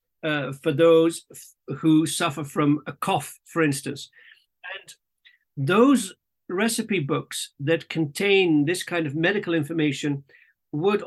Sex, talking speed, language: male, 125 wpm, English